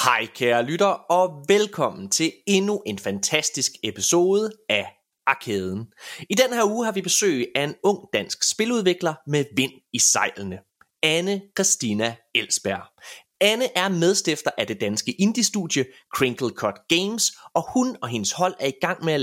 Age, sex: 30-49, male